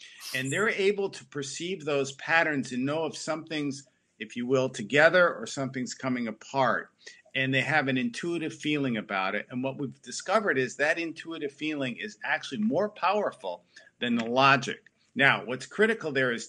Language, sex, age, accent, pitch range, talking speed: English, male, 50-69, American, 125-160 Hz, 170 wpm